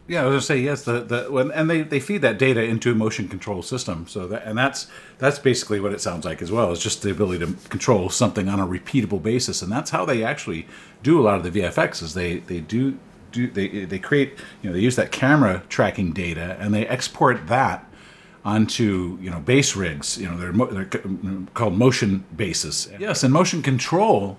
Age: 50-69